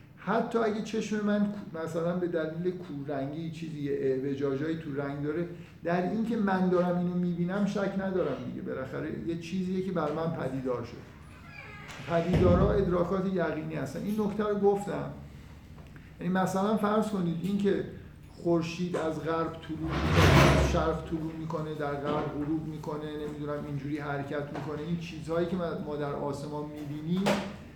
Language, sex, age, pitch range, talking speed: Persian, male, 50-69, 150-190 Hz, 140 wpm